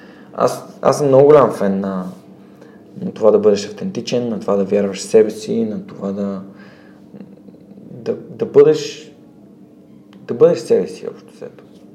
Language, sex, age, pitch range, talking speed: Bulgarian, male, 20-39, 105-135 Hz, 160 wpm